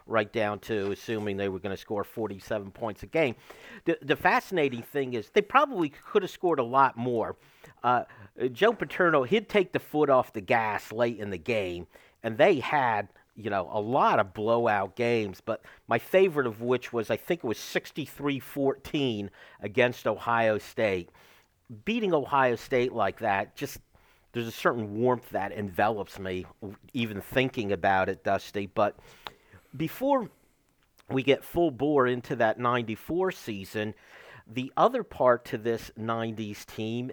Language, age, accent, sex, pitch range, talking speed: English, 50-69, American, male, 115-160 Hz, 160 wpm